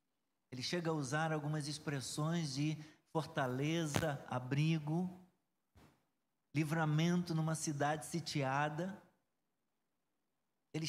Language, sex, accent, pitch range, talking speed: Portuguese, male, Brazilian, 135-180 Hz, 75 wpm